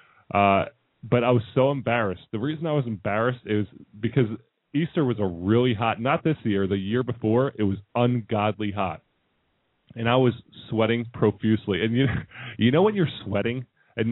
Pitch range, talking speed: 105-130 Hz, 175 wpm